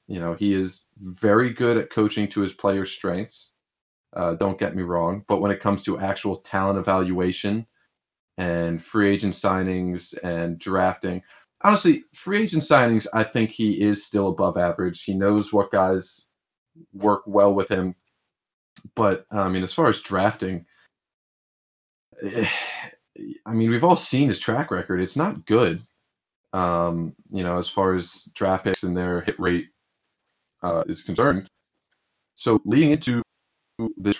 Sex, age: male, 30-49